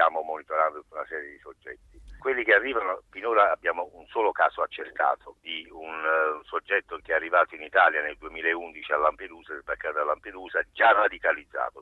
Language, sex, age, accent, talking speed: Italian, male, 50-69, native, 170 wpm